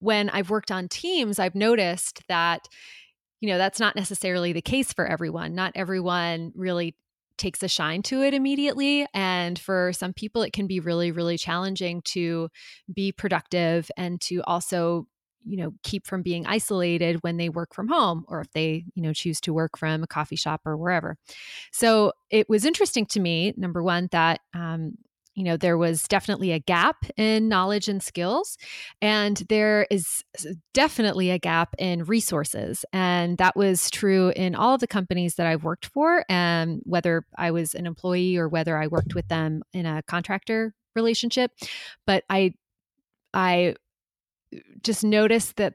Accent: American